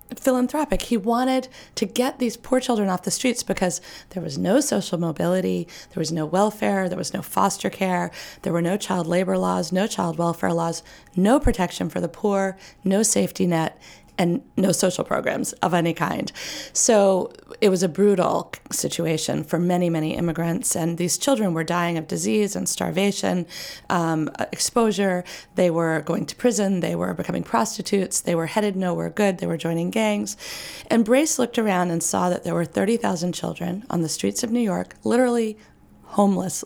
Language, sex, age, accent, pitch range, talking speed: English, female, 30-49, American, 175-235 Hz, 180 wpm